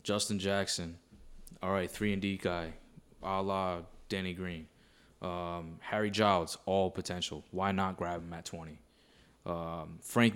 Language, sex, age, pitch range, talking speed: English, male, 20-39, 90-115 Hz, 145 wpm